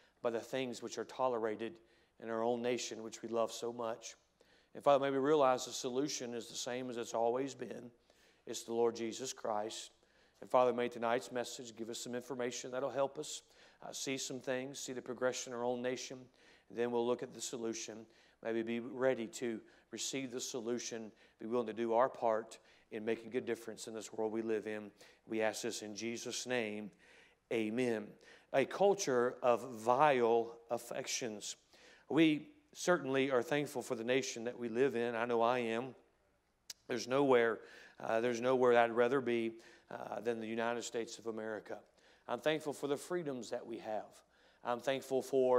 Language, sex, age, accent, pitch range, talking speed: English, male, 40-59, American, 115-130 Hz, 185 wpm